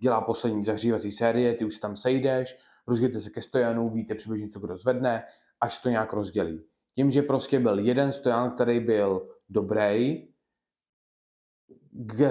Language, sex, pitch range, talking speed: Czech, male, 110-125 Hz, 155 wpm